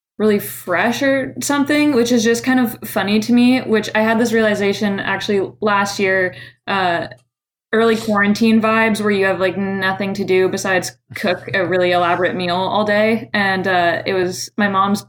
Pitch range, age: 175-205 Hz, 20-39